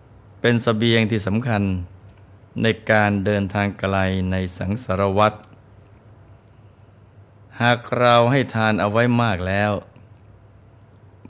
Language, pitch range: Thai, 100-110 Hz